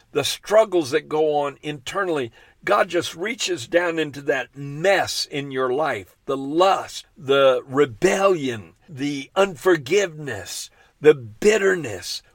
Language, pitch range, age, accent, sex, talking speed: English, 130-175 Hz, 50-69, American, male, 115 wpm